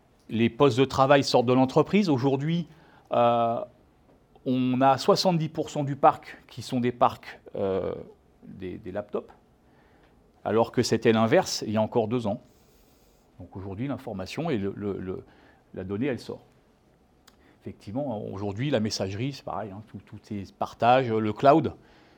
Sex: male